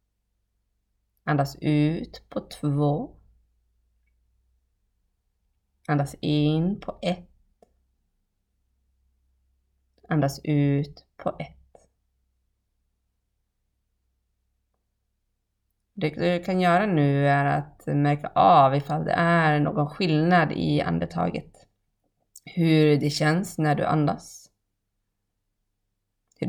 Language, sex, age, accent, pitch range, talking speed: Swedish, female, 30-49, native, 100-160 Hz, 80 wpm